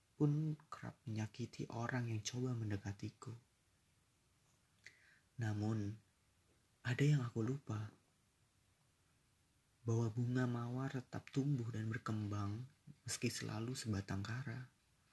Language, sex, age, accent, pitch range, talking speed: Indonesian, male, 30-49, native, 105-125 Hz, 90 wpm